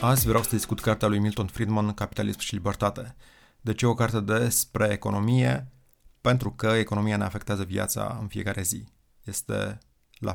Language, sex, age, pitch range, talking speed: Romanian, male, 30-49, 100-110 Hz, 170 wpm